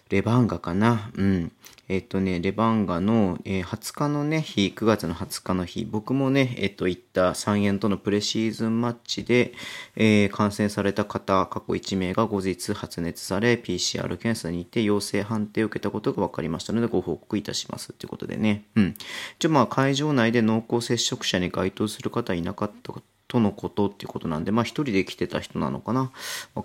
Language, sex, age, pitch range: Japanese, male, 30-49, 95-115 Hz